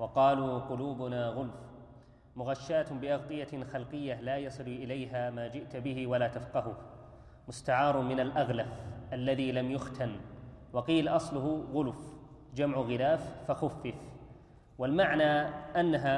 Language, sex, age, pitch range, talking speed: Arabic, male, 30-49, 130-150 Hz, 105 wpm